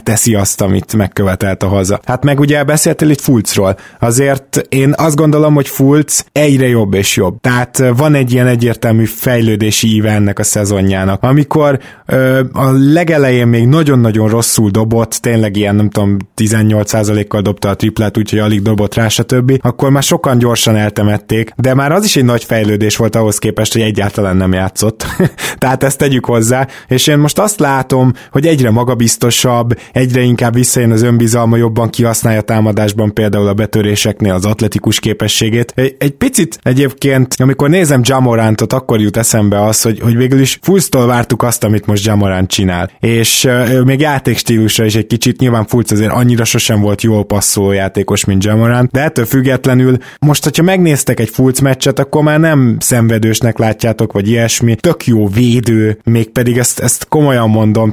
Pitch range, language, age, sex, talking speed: 110-130 Hz, Hungarian, 20-39, male, 170 wpm